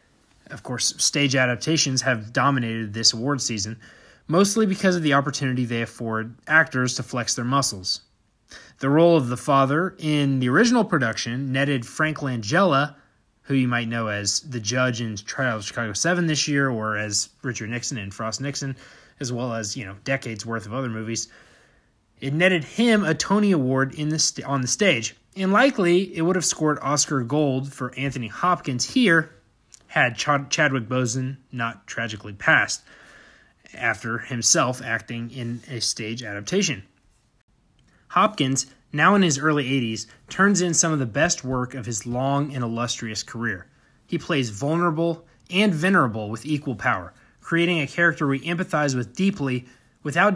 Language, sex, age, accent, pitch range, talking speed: English, male, 20-39, American, 115-155 Hz, 160 wpm